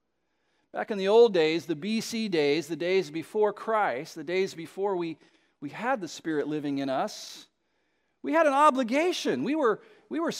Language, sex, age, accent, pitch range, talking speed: English, male, 40-59, American, 180-270 Hz, 175 wpm